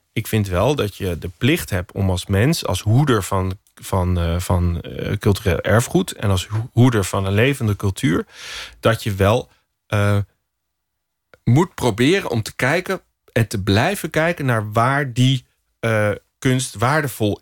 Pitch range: 100-130 Hz